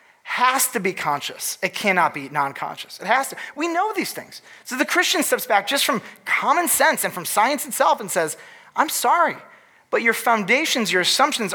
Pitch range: 160-235 Hz